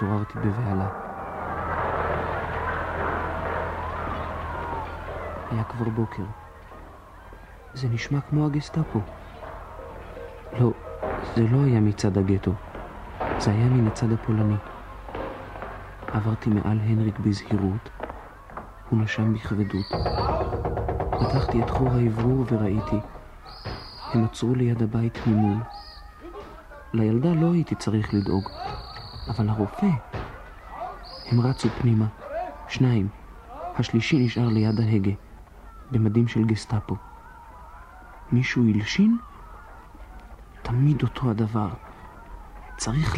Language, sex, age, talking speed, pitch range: Hebrew, male, 40-59, 85 wpm, 95-120 Hz